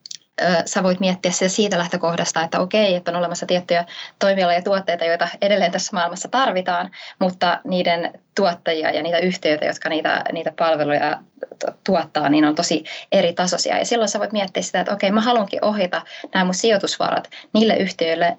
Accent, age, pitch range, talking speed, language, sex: native, 20-39, 160-190 Hz, 165 wpm, Finnish, female